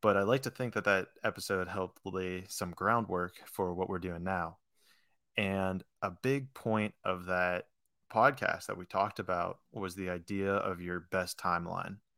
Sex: male